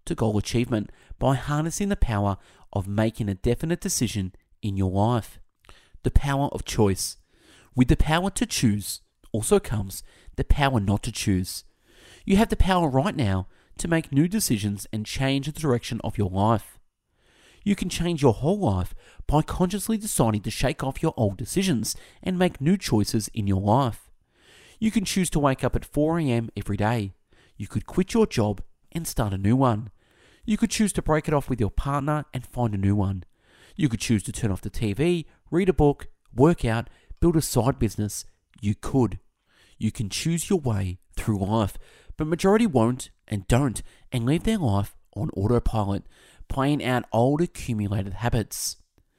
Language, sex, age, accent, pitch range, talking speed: English, male, 30-49, Australian, 105-155 Hz, 180 wpm